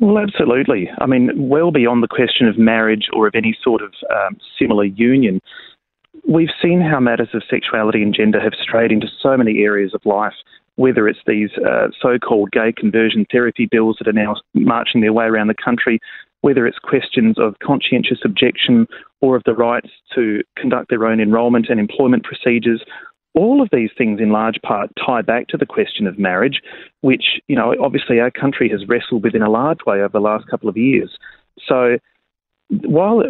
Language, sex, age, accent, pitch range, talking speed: English, male, 30-49, Australian, 110-130 Hz, 190 wpm